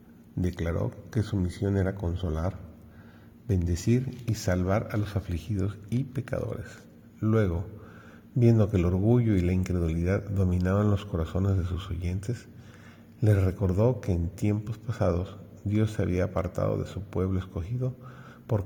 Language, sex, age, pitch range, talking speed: Spanish, male, 50-69, 95-110 Hz, 140 wpm